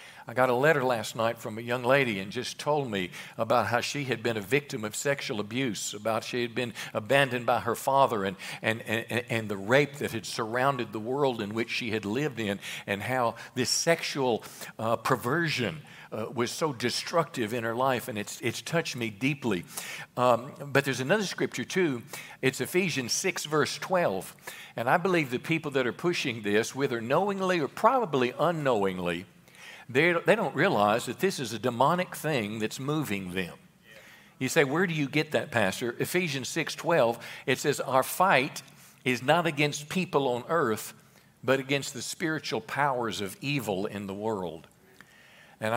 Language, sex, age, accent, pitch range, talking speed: English, male, 60-79, American, 110-140 Hz, 180 wpm